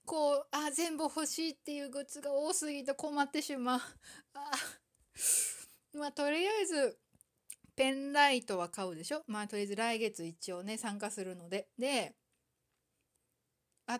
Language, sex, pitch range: Japanese, female, 195-270 Hz